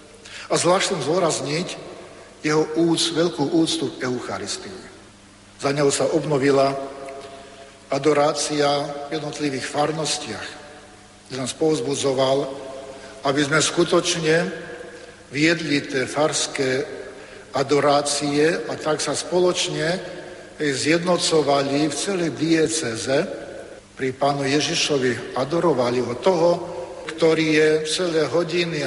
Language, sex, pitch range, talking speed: Slovak, male, 135-155 Hz, 95 wpm